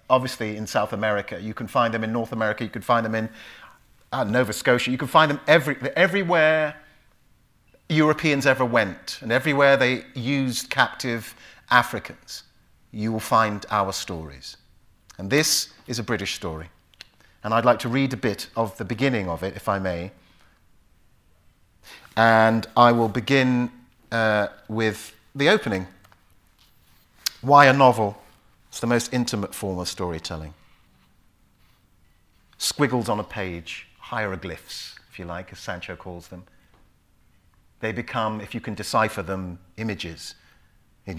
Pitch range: 90-120 Hz